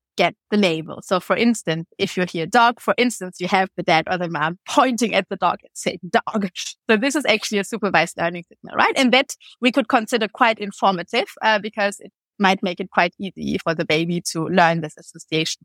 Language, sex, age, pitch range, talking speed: English, female, 30-49, 190-245 Hz, 220 wpm